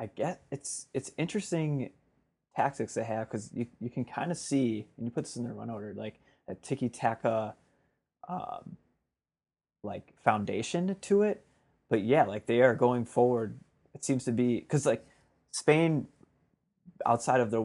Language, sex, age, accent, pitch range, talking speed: English, male, 20-39, American, 105-125 Hz, 165 wpm